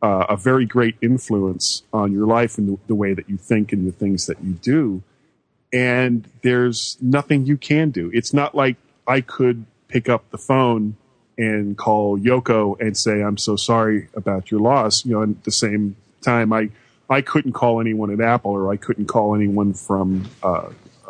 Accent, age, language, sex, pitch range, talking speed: American, 40-59, English, male, 100-125 Hz, 195 wpm